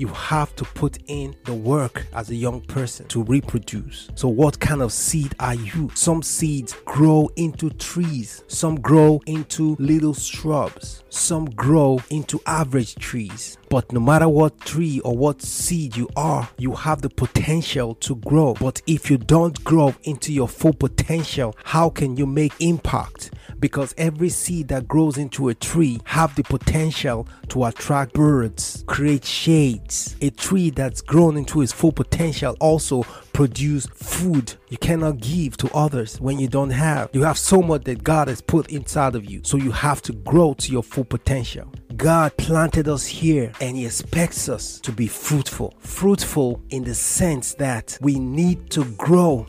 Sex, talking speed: male, 170 wpm